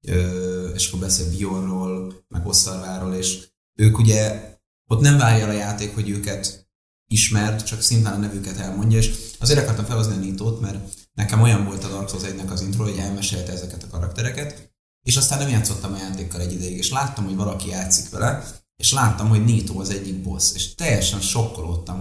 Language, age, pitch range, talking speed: Hungarian, 30-49, 90-105 Hz, 185 wpm